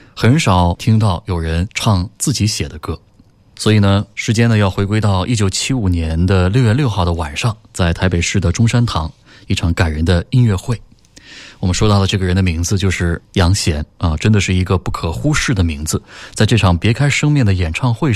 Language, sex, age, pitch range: Chinese, male, 20-39, 95-120 Hz